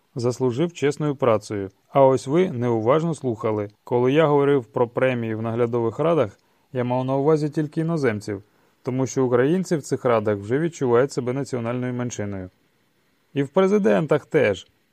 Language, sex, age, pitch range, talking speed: Ukrainian, male, 30-49, 110-150 Hz, 150 wpm